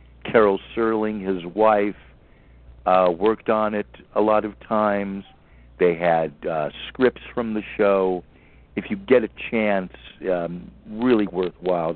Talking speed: 135 wpm